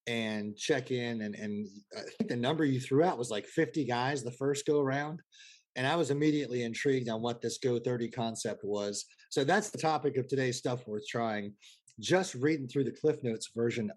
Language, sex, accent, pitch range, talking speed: English, male, American, 115-145 Hz, 205 wpm